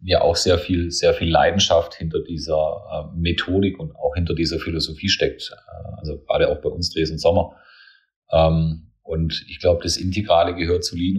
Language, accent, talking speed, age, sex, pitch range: German, German, 180 wpm, 30-49, male, 80-90 Hz